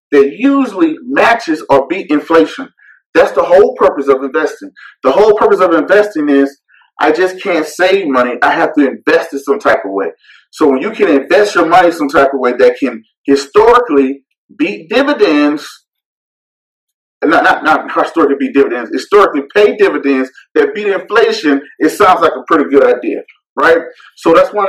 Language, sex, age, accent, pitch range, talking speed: English, male, 30-49, American, 140-215 Hz, 175 wpm